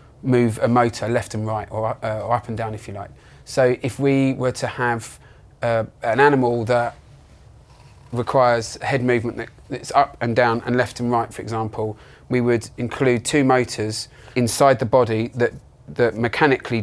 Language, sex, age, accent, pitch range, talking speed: English, male, 30-49, British, 110-130 Hz, 180 wpm